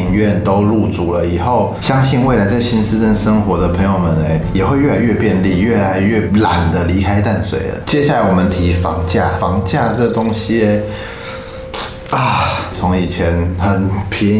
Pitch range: 95-110 Hz